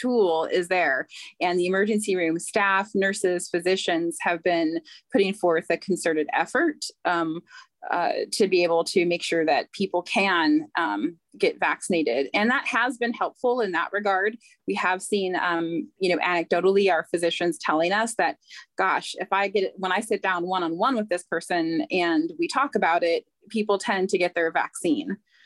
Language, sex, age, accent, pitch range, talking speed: English, female, 30-49, American, 175-230 Hz, 175 wpm